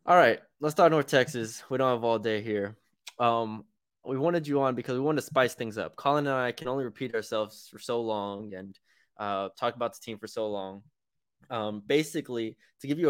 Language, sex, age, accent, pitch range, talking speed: English, male, 20-39, American, 110-135 Hz, 220 wpm